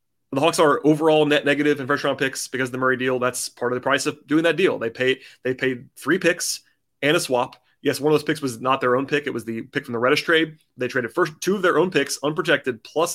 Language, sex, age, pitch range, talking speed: English, male, 30-49, 125-150 Hz, 280 wpm